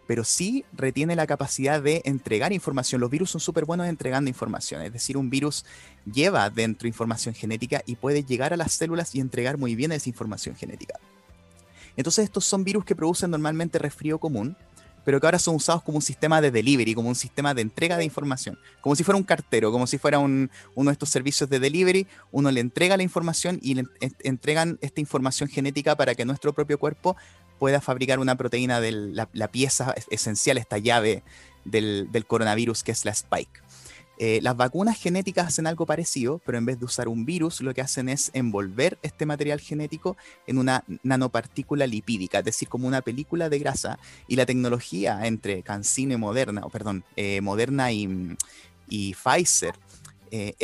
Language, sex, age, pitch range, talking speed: Spanish, male, 30-49, 115-150 Hz, 185 wpm